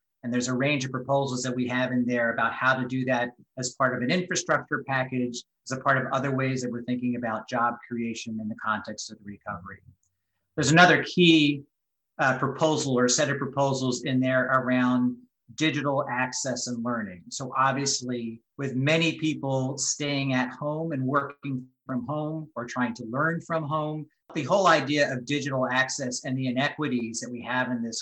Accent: American